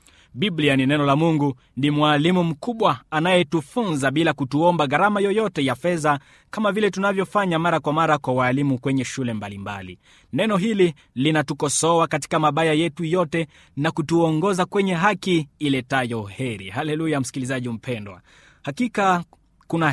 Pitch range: 135-185 Hz